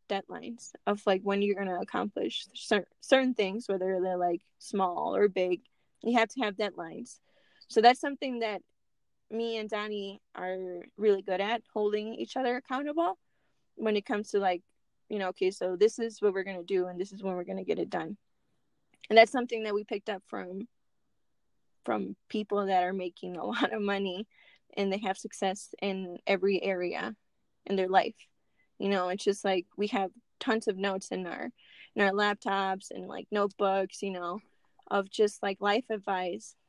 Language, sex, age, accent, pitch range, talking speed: English, female, 20-39, American, 190-220 Hz, 185 wpm